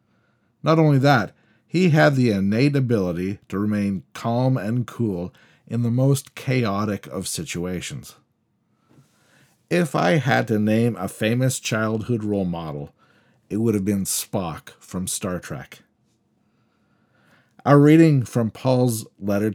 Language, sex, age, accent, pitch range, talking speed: English, male, 50-69, American, 100-140 Hz, 130 wpm